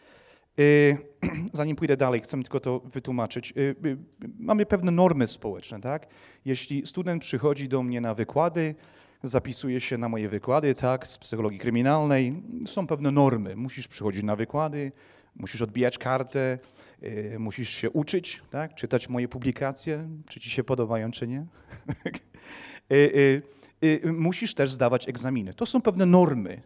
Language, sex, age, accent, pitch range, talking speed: Polish, male, 40-59, native, 120-150 Hz, 135 wpm